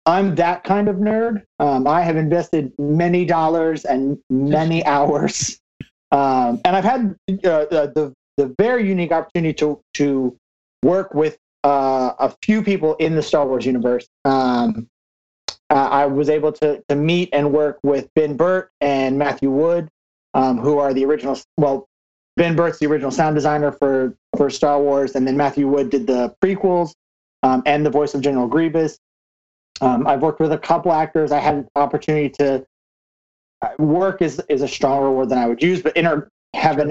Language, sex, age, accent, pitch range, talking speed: English, male, 30-49, American, 135-165 Hz, 180 wpm